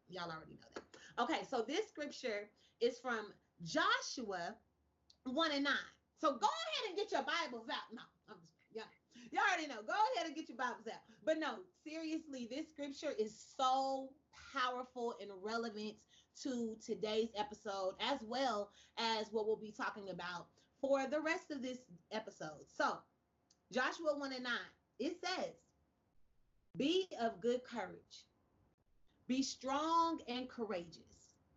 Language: English